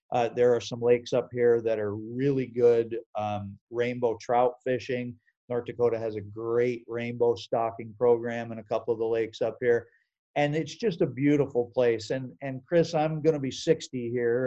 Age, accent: 50-69, American